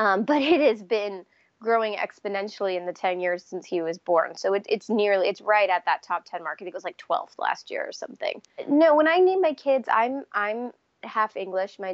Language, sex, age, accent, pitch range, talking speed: English, female, 20-39, American, 180-215 Hz, 225 wpm